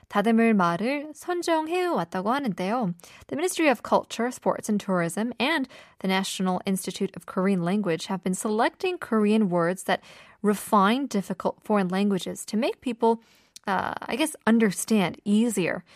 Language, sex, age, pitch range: Korean, female, 20-39, 190-260 Hz